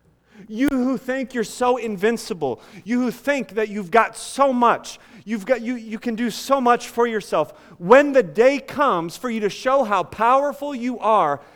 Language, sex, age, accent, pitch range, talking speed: English, male, 40-59, American, 145-235 Hz, 185 wpm